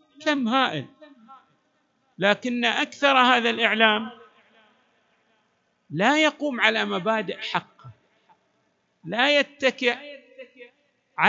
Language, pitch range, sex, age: Arabic, 200-280 Hz, male, 50-69